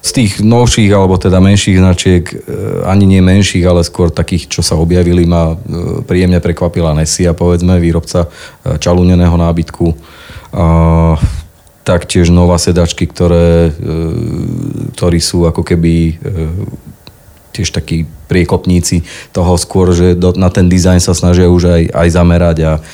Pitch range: 85-90 Hz